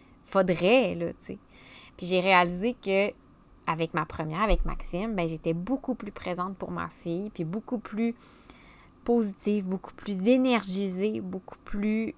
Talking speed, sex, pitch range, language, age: 150 wpm, female, 170-210 Hz, French, 20-39